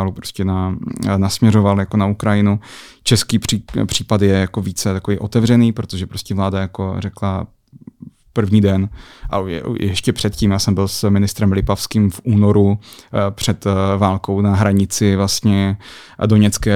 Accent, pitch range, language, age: native, 100-110 Hz, Czech, 30-49